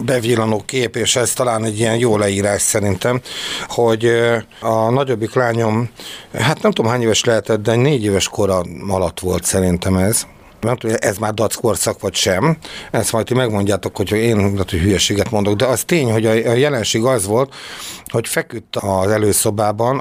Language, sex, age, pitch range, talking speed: Hungarian, male, 60-79, 105-140 Hz, 170 wpm